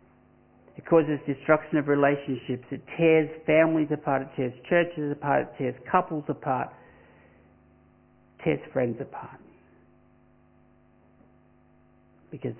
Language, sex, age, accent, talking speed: English, male, 60-79, Australian, 95 wpm